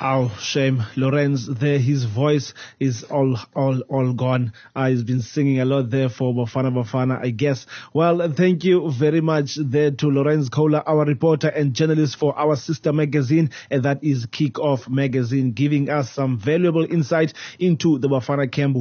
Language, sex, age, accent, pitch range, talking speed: English, male, 30-49, South African, 135-155 Hz, 175 wpm